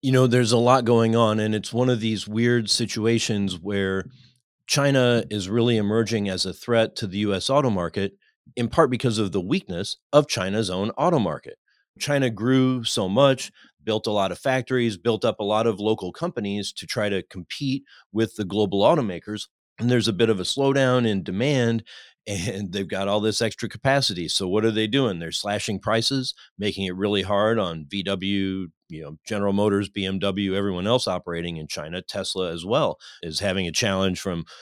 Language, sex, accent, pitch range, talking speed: English, male, American, 95-120 Hz, 190 wpm